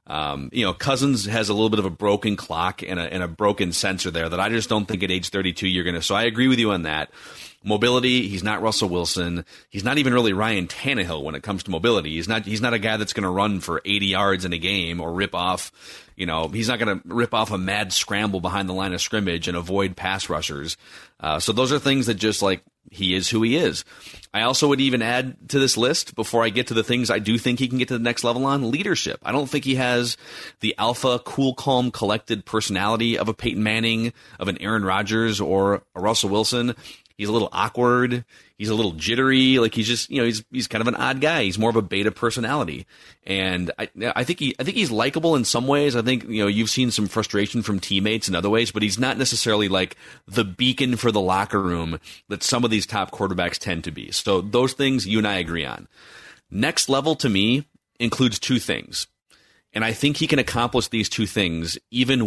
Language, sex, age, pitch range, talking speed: English, male, 30-49, 95-120 Hz, 240 wpm